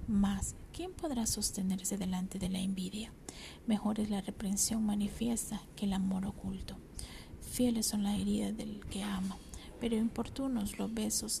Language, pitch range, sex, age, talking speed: English, 195-220 Hz, female, 50-69, 145 wpm